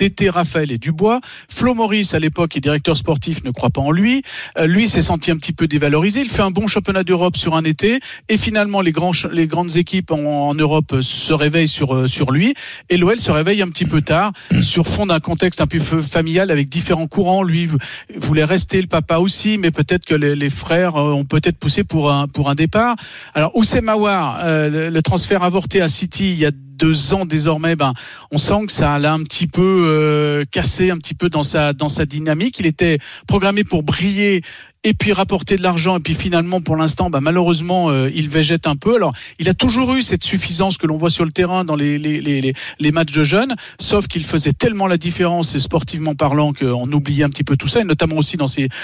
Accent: French